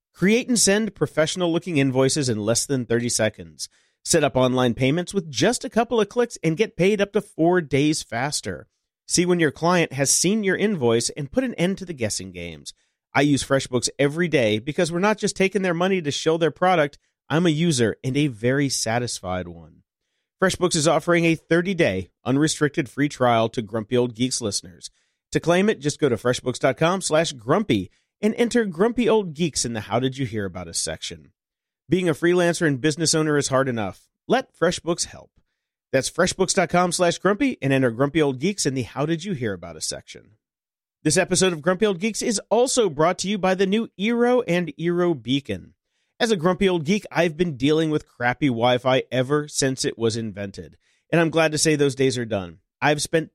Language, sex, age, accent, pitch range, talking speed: English, male, 40-59, American, 120-180 Hz, 200 wpm